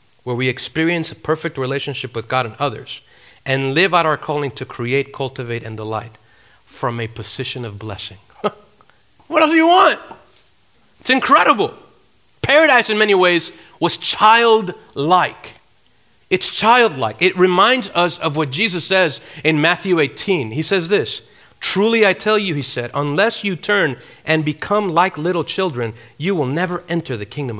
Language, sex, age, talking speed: English, male, 40-59, 160 wpm